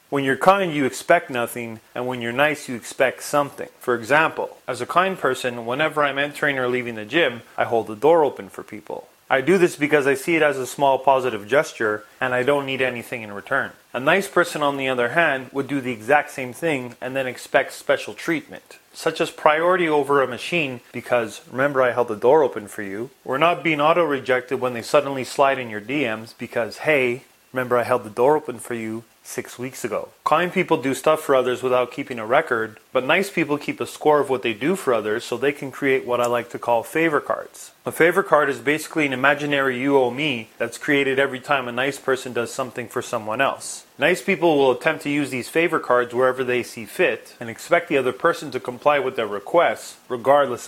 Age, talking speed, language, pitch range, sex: 30-49, 225 wpm, English, 125-150 Hz, male